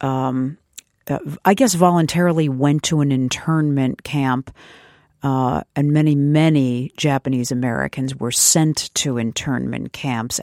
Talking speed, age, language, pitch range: 115 wpm, 50-69, English, 125-155 Hz